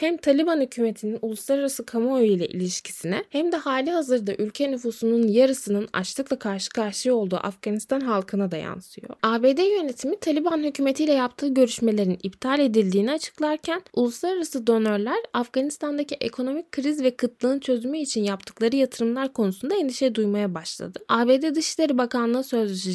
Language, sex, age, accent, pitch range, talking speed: Turkish, female, 10-29, native, 215-280 Hz, 130 wpm